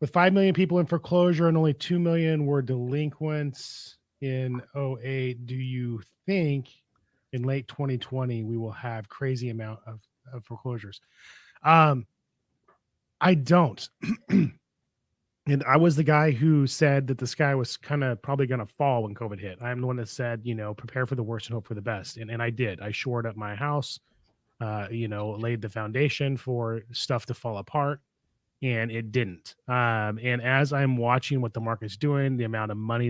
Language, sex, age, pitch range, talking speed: English, male, 30-49, 115-135 Hz, 185 wpm